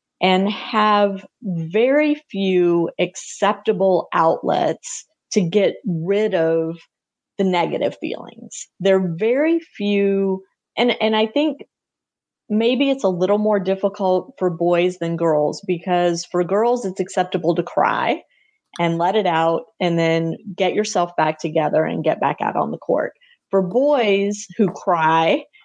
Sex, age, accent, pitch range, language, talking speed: female, 30-49, American, 170-210 Hz, English, 140 wpm